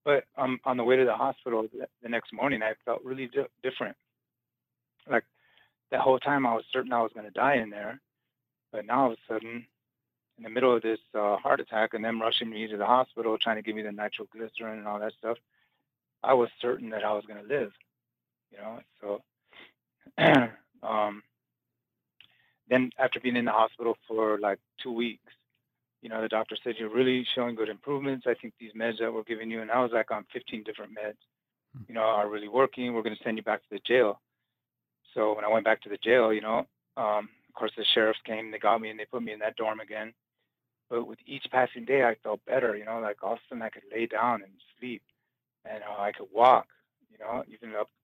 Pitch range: 110-125 Hz